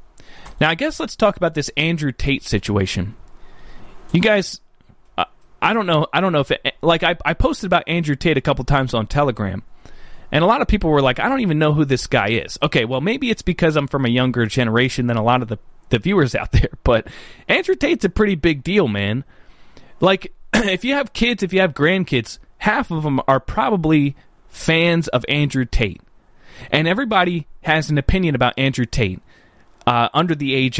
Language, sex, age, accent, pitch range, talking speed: English, male, 30-49, American, 125-180 Hz, 205 wpm